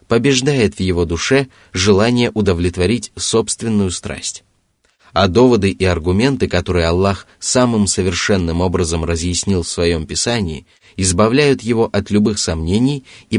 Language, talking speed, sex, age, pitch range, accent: Russian, 120 wpm, male, 20-39, 90-115 Hz, native